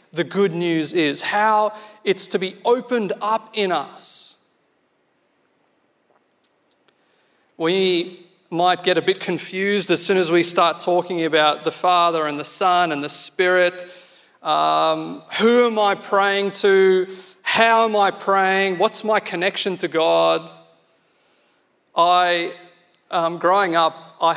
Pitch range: 155-195 Hz